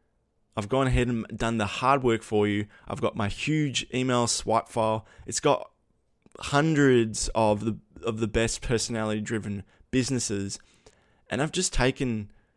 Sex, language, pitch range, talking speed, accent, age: male, English, 105-130 Hz, 150 wpm, Australian, 20-39